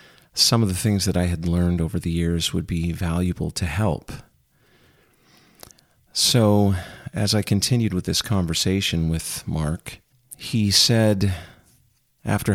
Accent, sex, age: American, male, 40-59